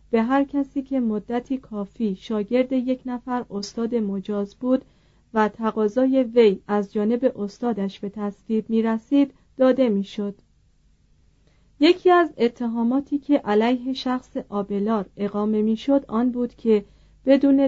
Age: 40-59